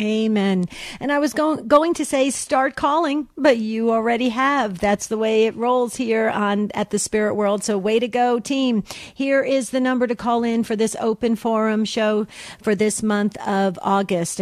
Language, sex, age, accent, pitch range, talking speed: English, female, 50-69, American, 200-245 Hz, 195 wpm